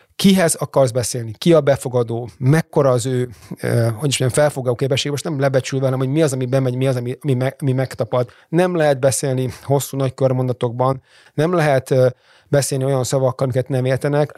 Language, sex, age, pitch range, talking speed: Hungarian, male, 30-49, 125-150 Hz, 155 wpm